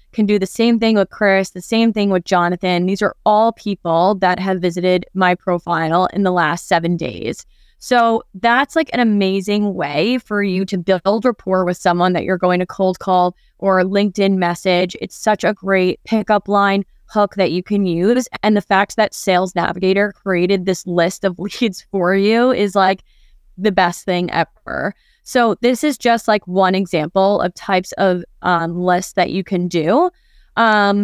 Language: English